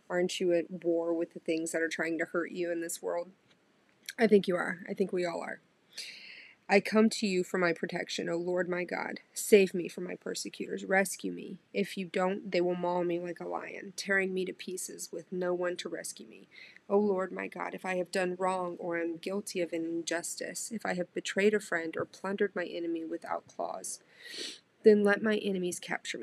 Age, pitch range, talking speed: 30-49, 170-195 Hz, 215 wpm